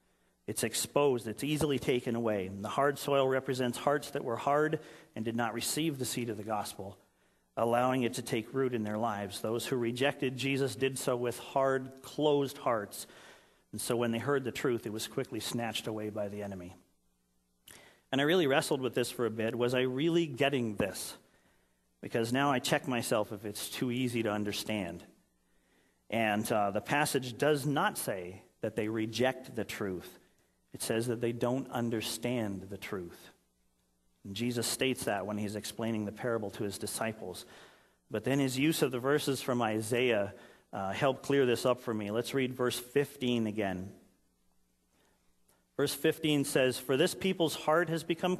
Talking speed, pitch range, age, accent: 180 wpm, 105-135 Hz, 40-59, American